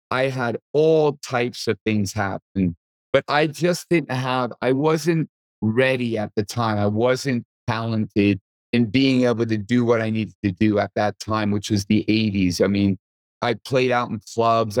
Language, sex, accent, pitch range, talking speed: English, male, American, 100-125 Hz, 180 wpm